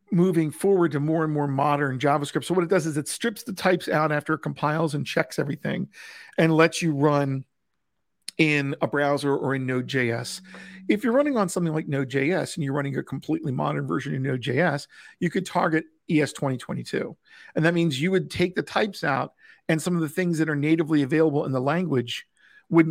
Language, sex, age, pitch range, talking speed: English, male, 50-69, 140-170 Hz, 200 wpm